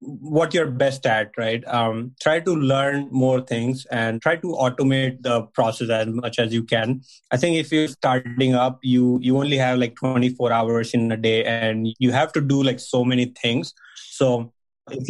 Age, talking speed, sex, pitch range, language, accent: 20-39, 195 wpm, male, 125-150 Hz, English, Indian